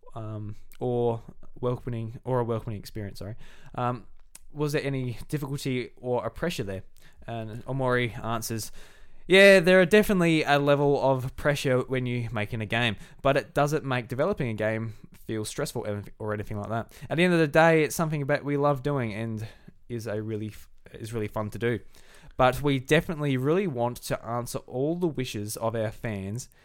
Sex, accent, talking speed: male, Australian, 180 wpm